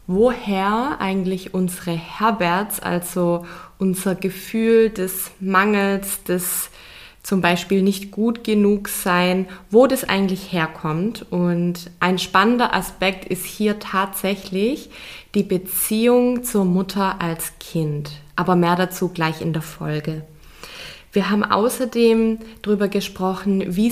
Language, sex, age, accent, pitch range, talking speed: German, female, 20-39, German, 185-215 Hz, 115 wpm